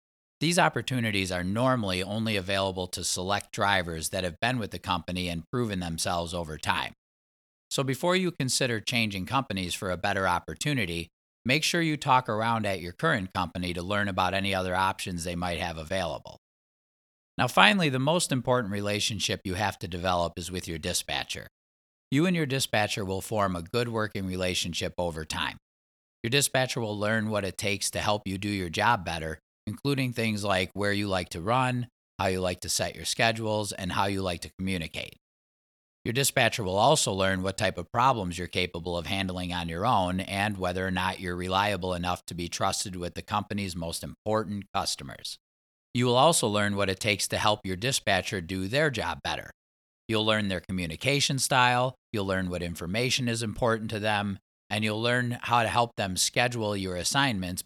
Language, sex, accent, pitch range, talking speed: English, male, American, 90-115 Hz, 185 wpm